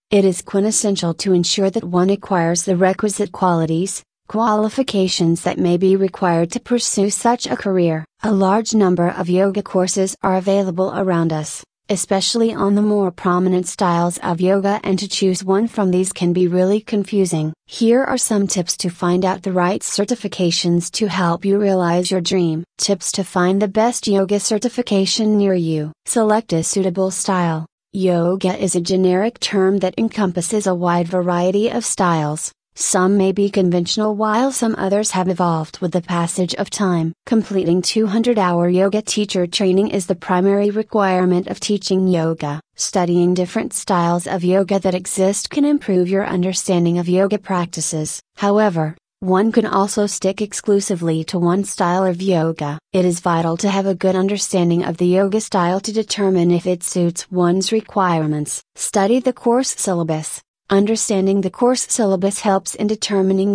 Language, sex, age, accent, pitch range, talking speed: English, female, 30-49, American, 180-205 Hz, 160 wpm